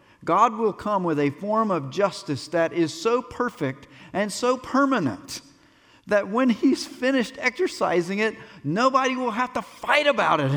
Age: 50-69